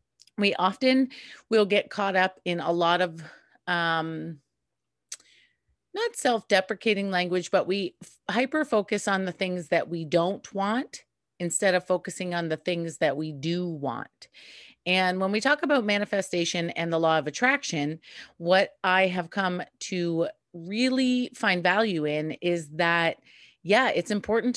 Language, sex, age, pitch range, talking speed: English, female, 30-49, 170-210 Hz, 145 wpm